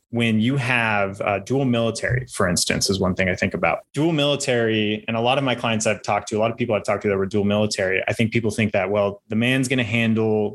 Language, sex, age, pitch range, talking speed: English, male, 20-39, 105-115 Hz, 265 wpm